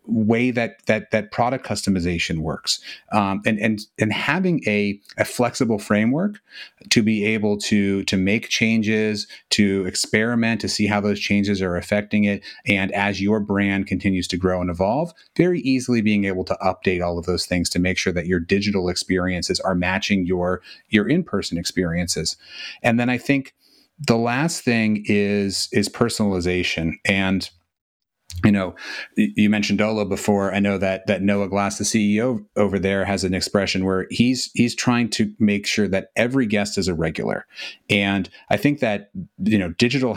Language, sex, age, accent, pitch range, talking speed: English, male, 30-49, American, 95-115 Hz, 170 wpm